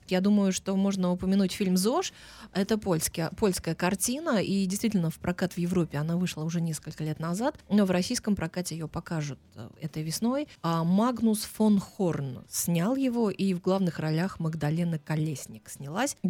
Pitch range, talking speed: 165-200 Hz, 160 wpm